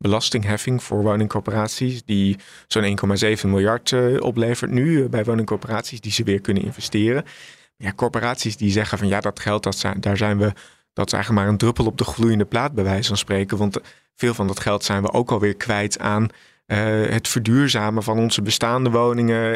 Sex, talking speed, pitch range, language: male, 195 wpm, 100-120 Hz, Dutch